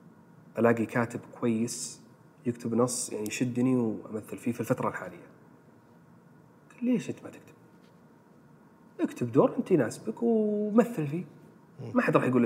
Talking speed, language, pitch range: 125 wpm, Arabic, 115-160 Hz